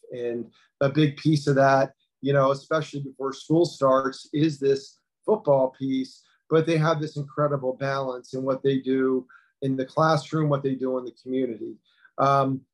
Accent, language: American, English